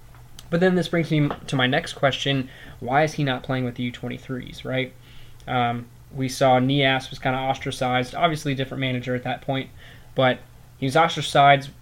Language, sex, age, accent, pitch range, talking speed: English, male, 20-39, American, 125-140 Hz, 190 wpm